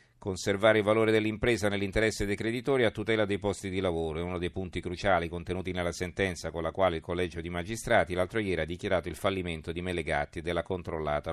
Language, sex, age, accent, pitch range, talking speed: Italian, male, 50-69, native, 85-105 Hz, 205 wpm